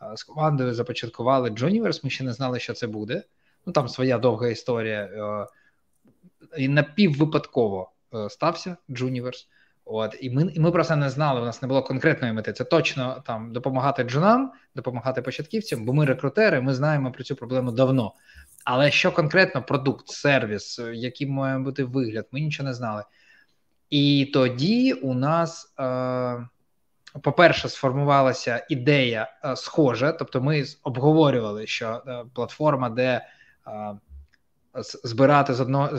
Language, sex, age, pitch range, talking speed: Ukrainian, male, 20-39, 125-150 Hz, 135 wpm